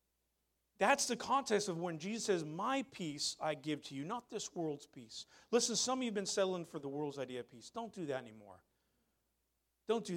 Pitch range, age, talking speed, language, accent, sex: 155-215 Hz, 40-59, 210 wpm, English, American, male